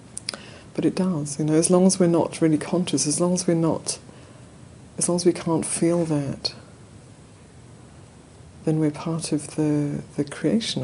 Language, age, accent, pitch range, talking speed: English, 50-69, British, 130-160 Hz, 170 wpm